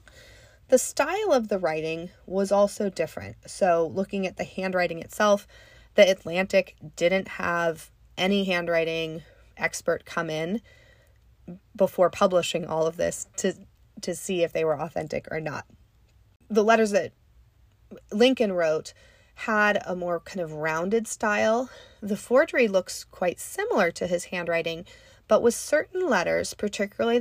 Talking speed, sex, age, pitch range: 135 wpm, female, 30-49, 165-210 Hz